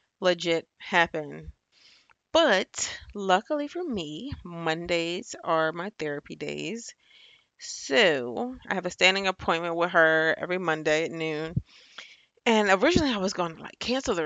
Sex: female